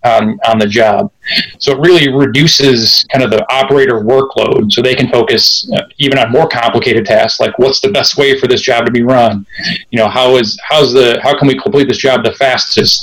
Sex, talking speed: male, 215 wpm